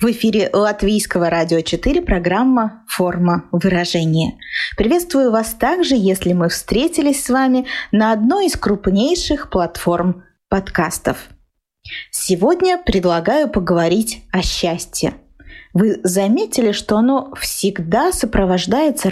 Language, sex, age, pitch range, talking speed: Russian, female, 20-39, 185-255 Hz, 105 wpm